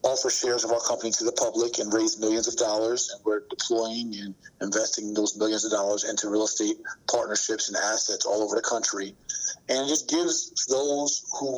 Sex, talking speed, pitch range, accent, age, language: male, 195 wpm, 110-165 Hz, American, 50-69, English